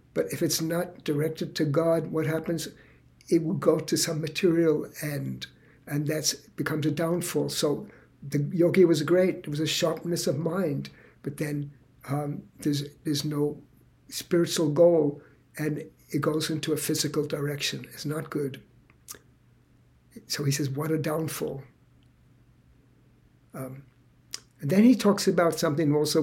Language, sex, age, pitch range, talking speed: English, male, 60-79, 145-170 Hz, 145 wpm